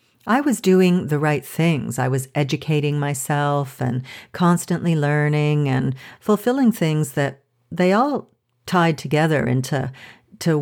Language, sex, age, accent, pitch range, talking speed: English, female, 50-69, American, 130-175 Hz, 130 wpm